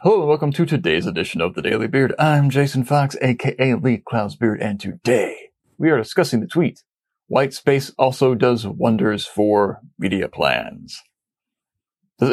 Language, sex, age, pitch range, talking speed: English, male, 40-59, 115-155 Hz, 160 wpm